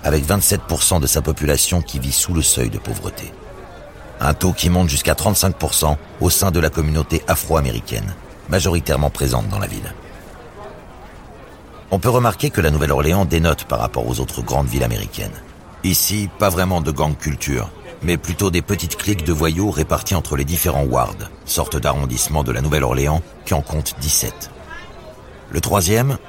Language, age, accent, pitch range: French, 60-79, French, 75-95 Hz